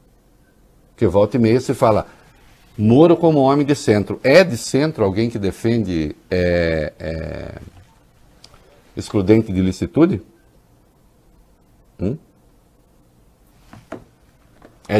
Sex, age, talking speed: male, 60-79, 90 wpm